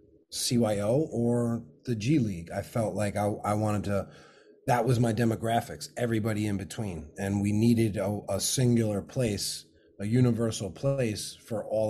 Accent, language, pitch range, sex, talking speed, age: American, English, 100-120 Hz, male, 155 wpm, 30-49